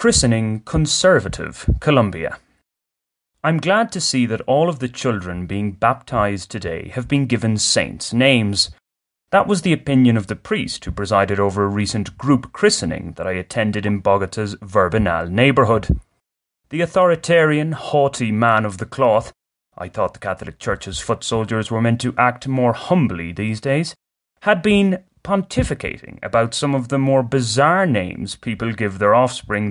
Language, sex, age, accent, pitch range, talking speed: English, male, 30-49, British, 100-140 Hz, 155 wpm